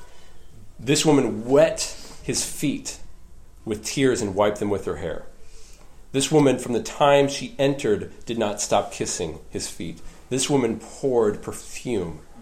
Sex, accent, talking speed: male, American, 145 wpm